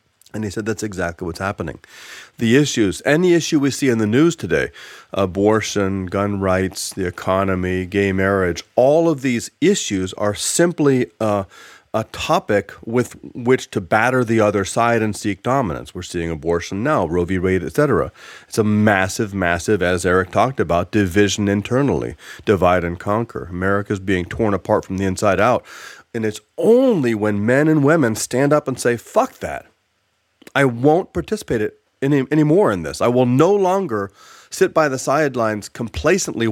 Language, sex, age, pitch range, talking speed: English, male, 30-49, 100-135 Hz, 170 wpm